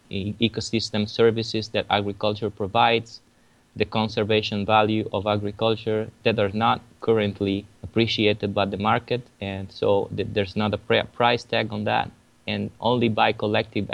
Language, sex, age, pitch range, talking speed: English, male, 20-39, 105-115 Hz, 150 wpm